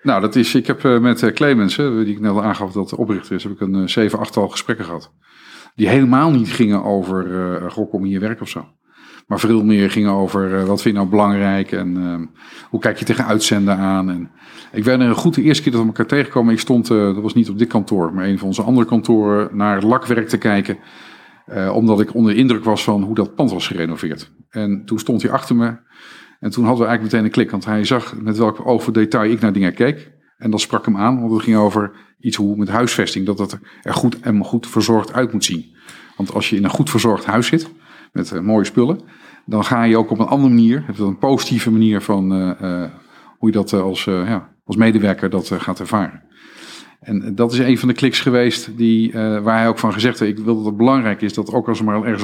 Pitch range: 100-120 Hz